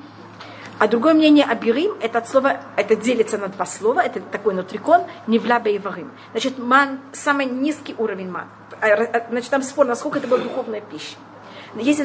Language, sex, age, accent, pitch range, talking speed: Russian, female, 30-49, native, 230-295 Hz, 155 wpm